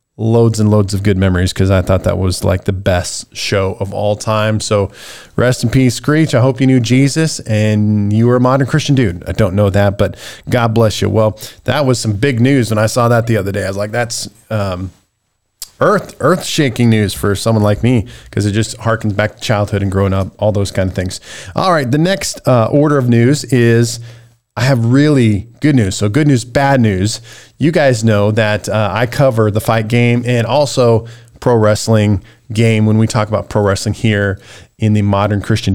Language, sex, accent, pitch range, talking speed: English, male, American, 105-125 Hz, 215 wpm